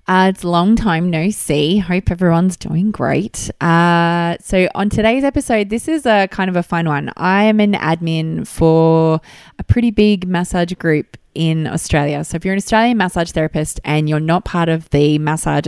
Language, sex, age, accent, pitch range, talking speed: English, female, 20-39, Australian, 155-200 Hz, 190 wpm